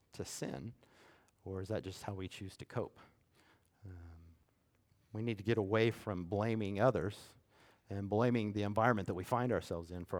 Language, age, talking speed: English, 50-69, 175 wpm